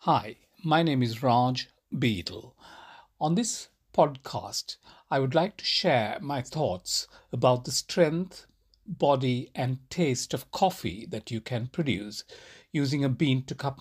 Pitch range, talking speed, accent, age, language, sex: 120-160 Hz, 135 wpm, Indian, 60-79, English, male